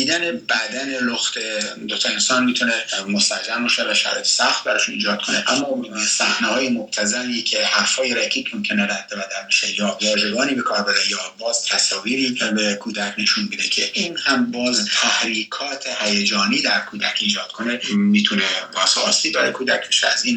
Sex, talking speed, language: male, 160 wpm, Persian